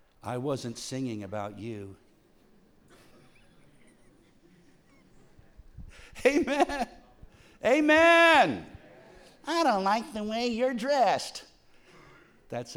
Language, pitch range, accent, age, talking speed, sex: English, 110-180 Hz, American, 60-79, 70 wpm, male